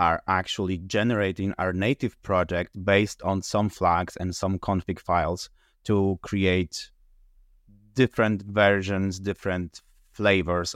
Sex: male